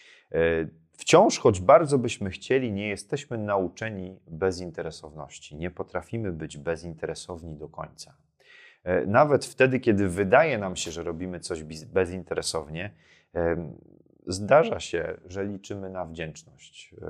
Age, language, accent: 30-49, Polish, native